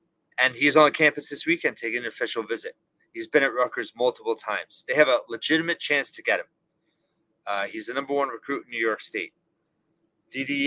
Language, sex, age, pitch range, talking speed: English, male, 30-49, 130-170 Hz, 195 wpm